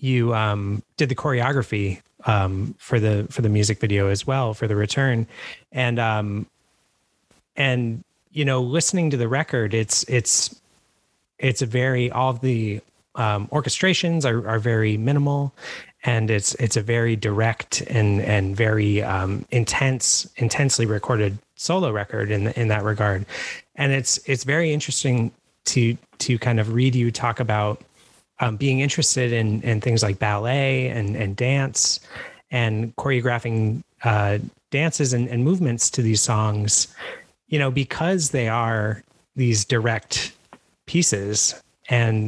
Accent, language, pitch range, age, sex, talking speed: American, English, 110-135 Hz, 30-49, male, 145 wpm